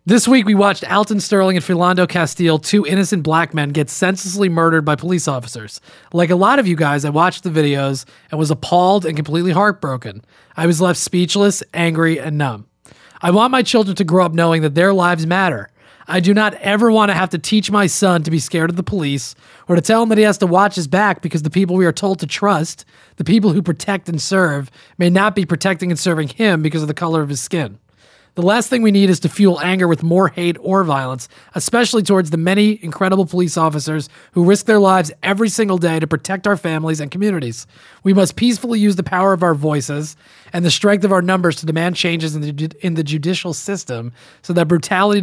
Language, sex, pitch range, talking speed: English, male, 160-195 Hz, 225 wpm